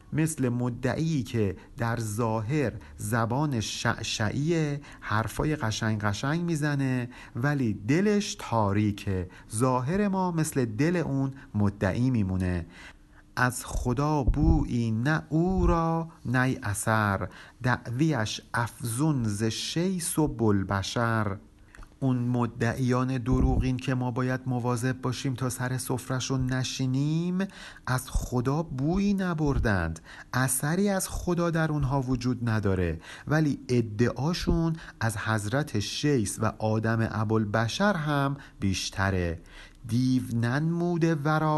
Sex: male